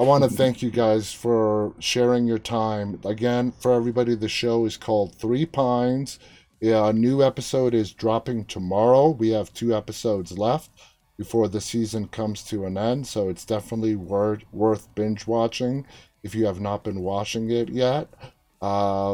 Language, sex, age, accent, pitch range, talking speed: English, male, 30-49, American, 100-120 Hz, 170 wpm